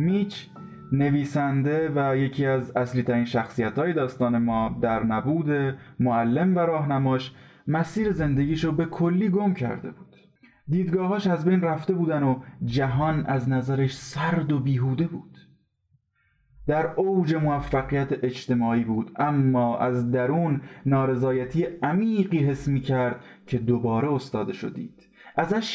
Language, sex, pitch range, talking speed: Persian, male, 120-165 Hz, 130 wpm